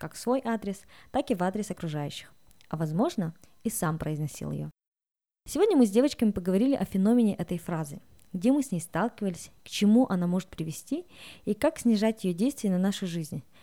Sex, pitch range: female, 175-220 Hz